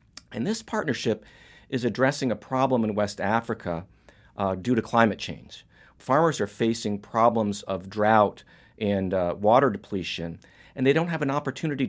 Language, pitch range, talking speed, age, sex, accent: English, 100-130 Hz, 155 wpm, 50-69, male, American